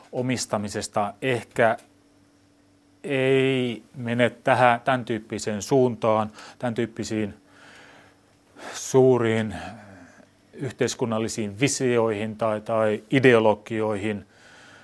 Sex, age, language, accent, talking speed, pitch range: male, 30-49, Finnish, native, 65 wpm, 105-135 Hz